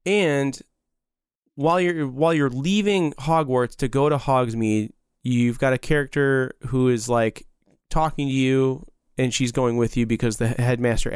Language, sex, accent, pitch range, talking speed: English, male, American, 120-150 Hz, 155 wpm